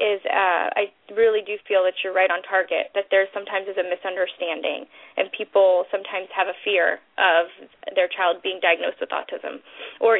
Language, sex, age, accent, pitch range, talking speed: English, female, 10-29, American, 185-205 Hz, 180 wpm